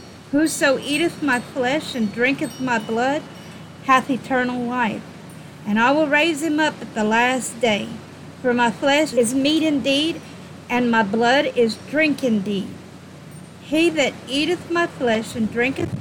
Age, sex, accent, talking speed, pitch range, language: 50-69, female, American, 150 wpm, 225-290 Hz, English